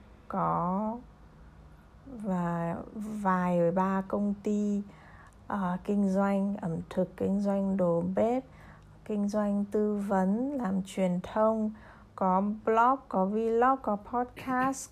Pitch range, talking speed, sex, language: 180-215 Hz, 110 wpm, female, Vietnamese